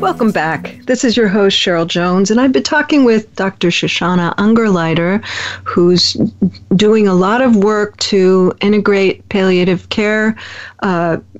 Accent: American